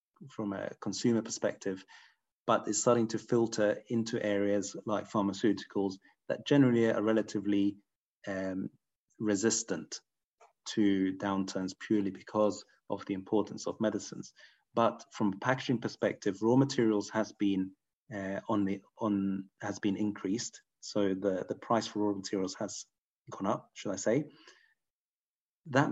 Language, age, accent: English, 30-49, British